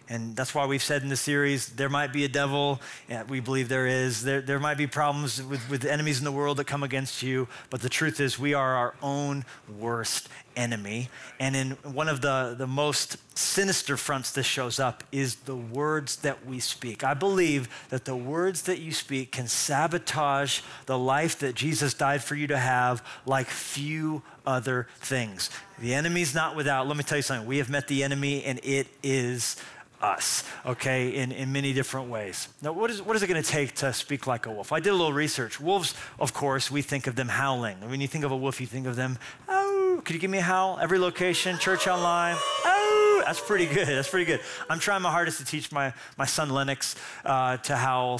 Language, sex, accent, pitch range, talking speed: English, male, American, 130-150 Hz, 220 wpm